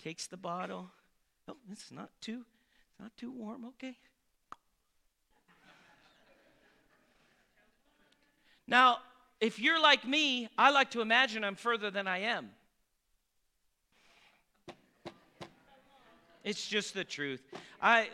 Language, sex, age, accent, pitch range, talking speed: English, male, 40-59, American, 210-265 Hz, 100 wpm